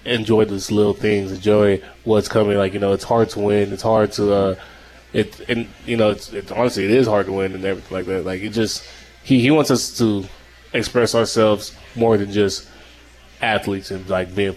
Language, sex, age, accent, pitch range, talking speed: English, male, 20-39, American, 95-105 Hz, 210 wpm